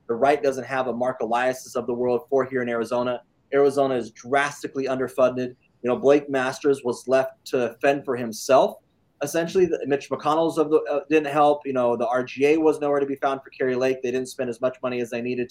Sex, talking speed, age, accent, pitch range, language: male, 225 wpm, 20-39, American, 125-155 Hz, English